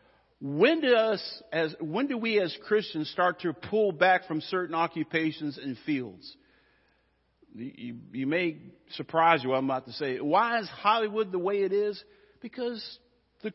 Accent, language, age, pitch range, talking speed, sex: American, English, 50-69, 165-260 Hz, 170 wpm, male